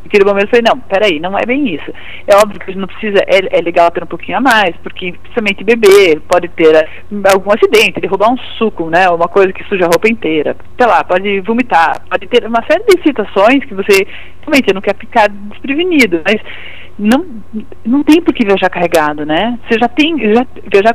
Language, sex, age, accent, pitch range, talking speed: Portuguese, female, 40-59, Brazilian, 195-285 Hz, 205 wpm